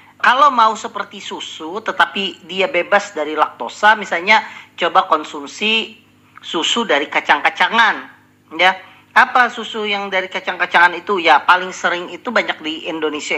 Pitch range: 160-205 Hz